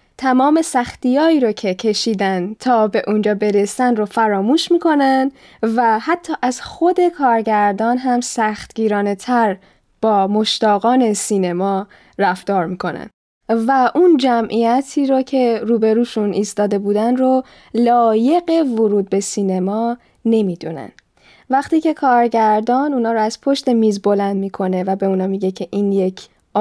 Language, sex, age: Persian, female, 10-29